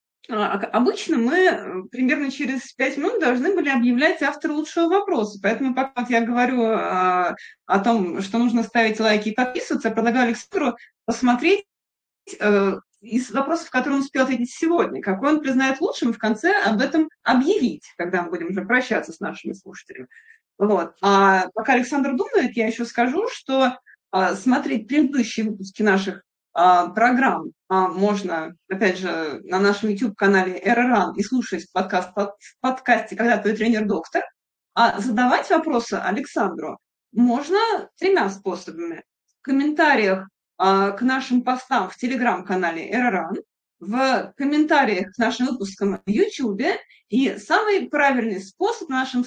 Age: 20-39